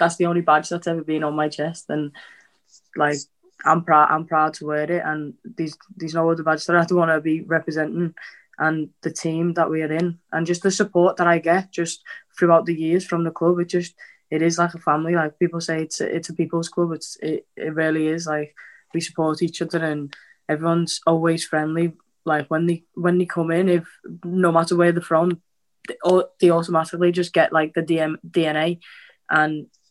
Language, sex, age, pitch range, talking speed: English, female, 20-39, 155-170 Hz, 215 wpm